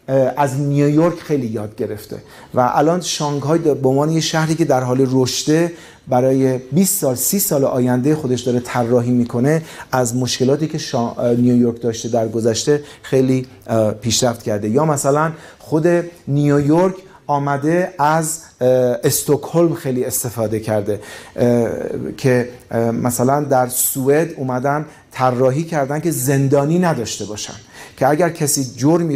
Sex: male